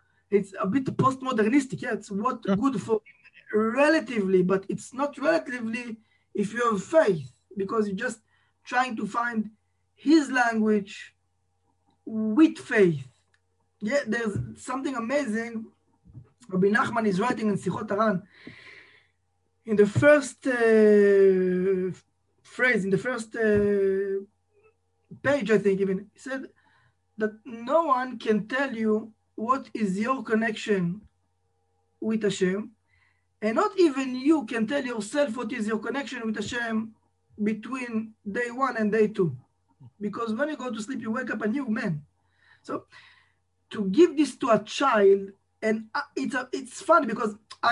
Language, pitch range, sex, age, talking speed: English, 195-250 Hz, male, 20-39, 140 wpm